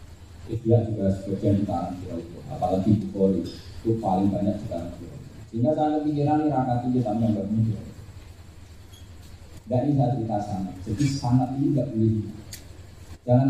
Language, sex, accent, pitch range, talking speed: Indonesian, male, native, 95-125 Hz, 120 wpm